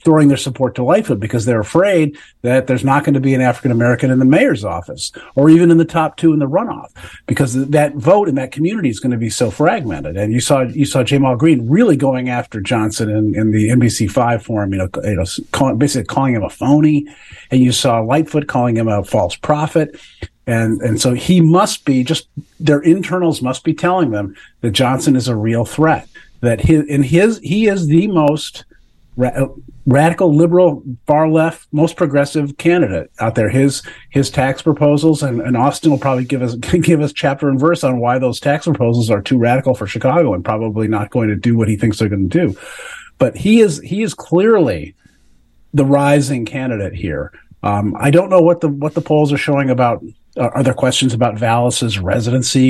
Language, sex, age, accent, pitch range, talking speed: English, male, 50-69, American, 120-155 Hz, 205 wpm